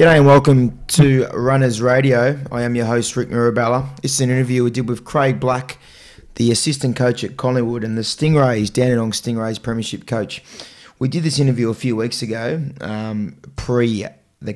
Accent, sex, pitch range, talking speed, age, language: Australian, male, 110-125 Hz, 180 wpm, 20-39, English